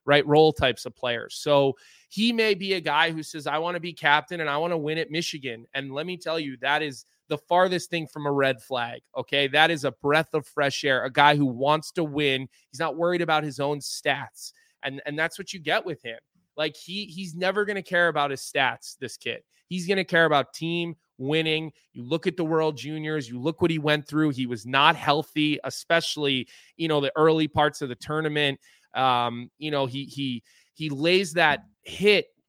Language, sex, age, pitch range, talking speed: English, male, 20-39, 140-170 Hz, 225 wpm